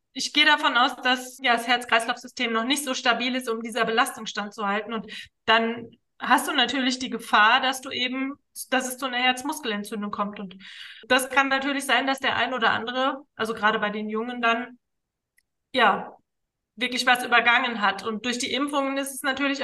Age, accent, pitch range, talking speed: 20-39, German, 235-275 Hz, 185 wpm